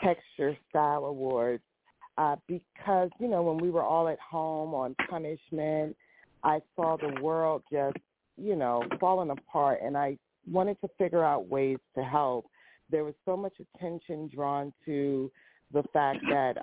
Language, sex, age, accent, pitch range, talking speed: English, female, 50-69, American, 140-175 Hz, 155 wpm